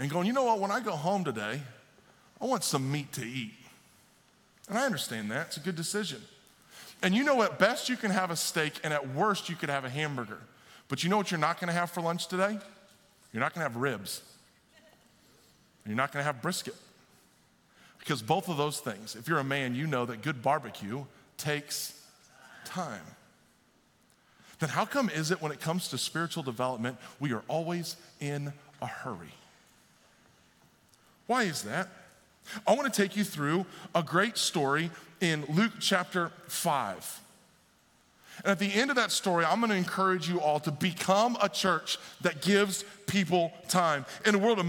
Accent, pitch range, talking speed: American, 150-200 Hz, 190 wpm